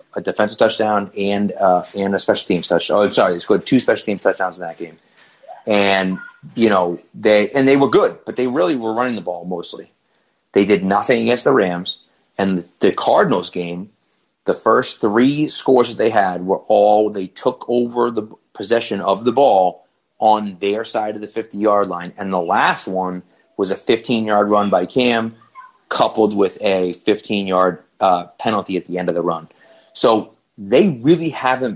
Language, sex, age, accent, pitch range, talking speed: English, male, 30-49, American, 95-130 Hz, 185 wpm